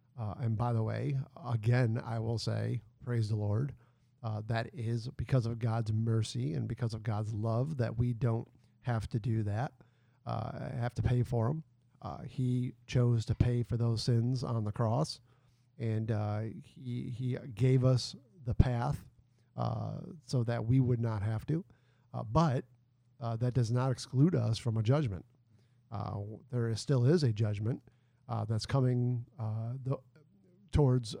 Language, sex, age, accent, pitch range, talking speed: English, male, 50-69, American, 115-125 Hz, 170 wpm